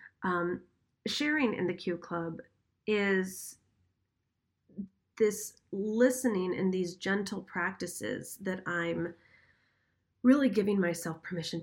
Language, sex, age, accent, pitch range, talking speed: English, female, 30-49, American, 170-200 Hz, 100 wpm